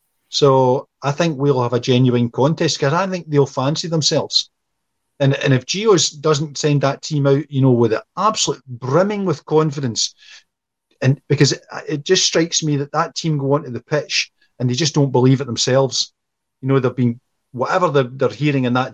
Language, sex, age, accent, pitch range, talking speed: English, male, 40-59, British, 125-155 Hz, 195 wpm